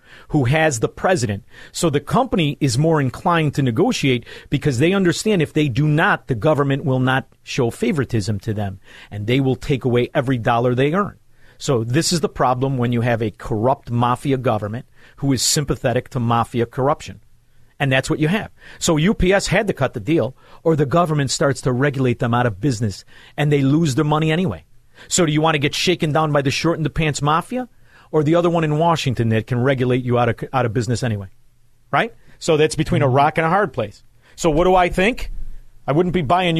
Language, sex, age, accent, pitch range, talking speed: English, male, 40-59, American, 125-175 Hz, 215 wpm